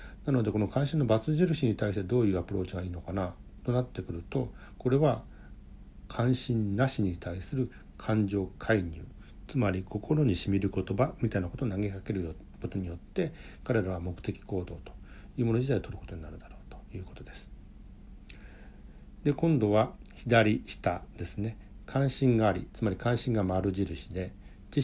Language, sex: Japanese, male